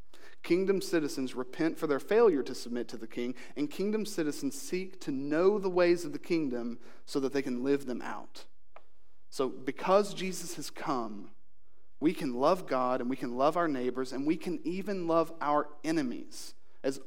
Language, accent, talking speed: English, American, 185 wpm